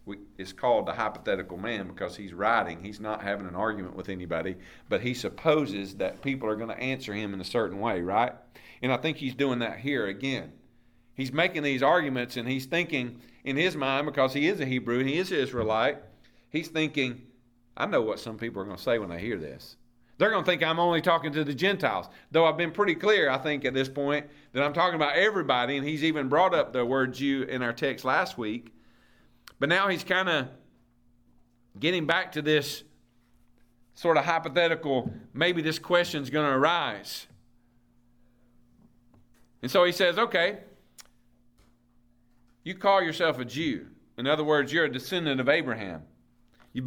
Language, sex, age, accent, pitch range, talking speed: English, male, 40-59, American, 120-160 Hz, 190 wpm